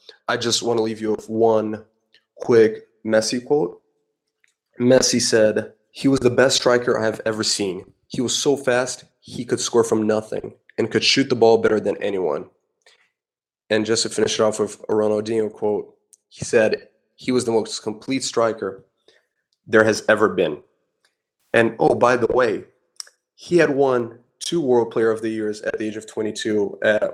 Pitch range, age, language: 110-130 Hz, 20-39, English